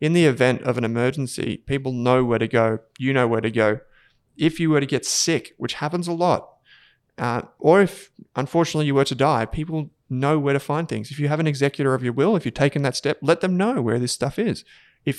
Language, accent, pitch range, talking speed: English, Australian, 120-155 Hz, 240 wpm